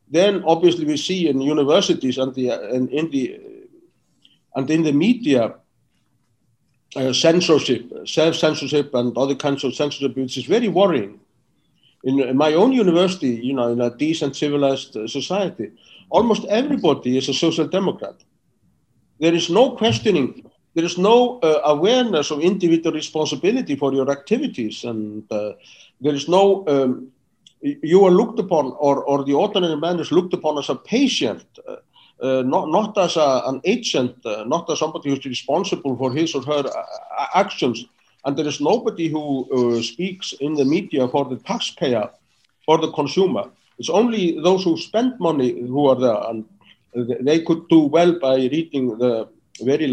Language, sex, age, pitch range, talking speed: English, male, 60-79, 130-175 Hz, 165 wpm